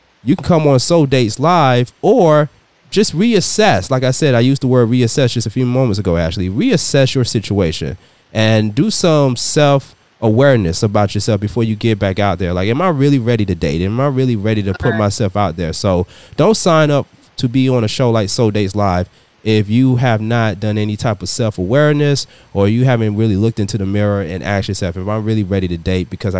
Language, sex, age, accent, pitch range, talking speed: English, male, 20-39, American, 105-135 Hz, 215 wpm